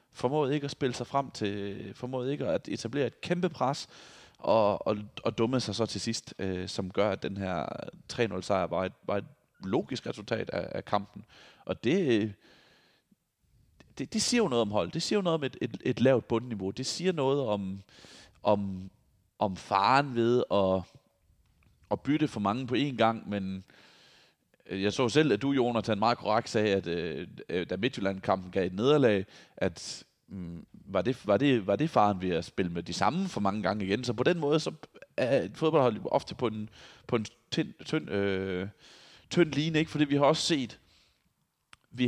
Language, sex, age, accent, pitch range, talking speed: Danish, male, 30-49, native, 100-135 Hz, 190 wpm